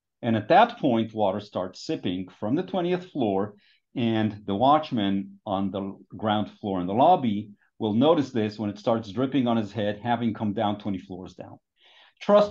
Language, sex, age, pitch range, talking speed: English, male, 40-59, 105-145 Hz, 180 wpm